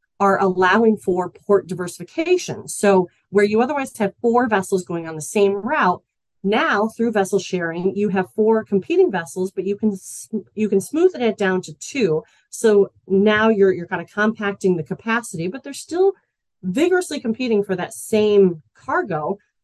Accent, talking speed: American, 165 wpm